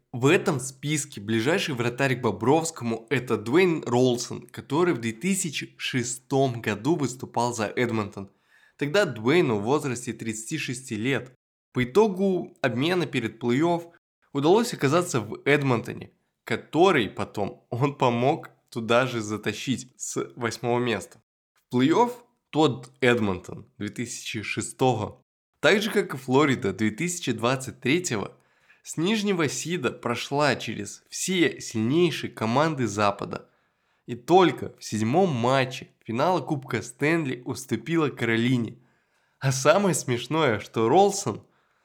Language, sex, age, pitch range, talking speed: Russian, male, 20-39, 120-155 Hz, 110 wpm